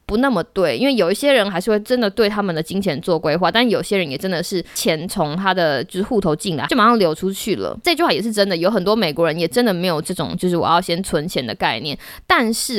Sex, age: female, 20-39